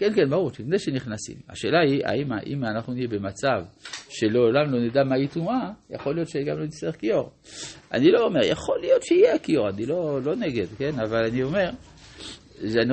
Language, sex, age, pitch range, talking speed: Hebrew, male, 50-69, 110-150 Hz, 175 wpm